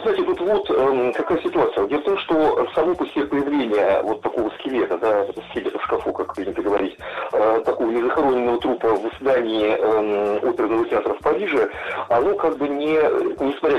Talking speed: 165 wpm